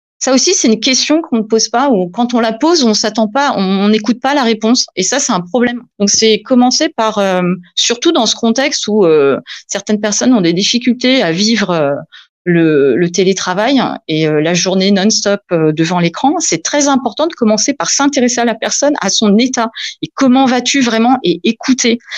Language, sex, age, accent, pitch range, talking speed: French, female, 30-49, French, 180-245 Hz, 200 wpm